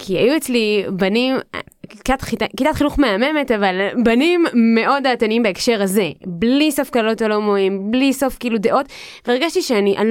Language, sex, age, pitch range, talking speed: Hebrew, female, 20-39, 195-275 Hz, 135 wpm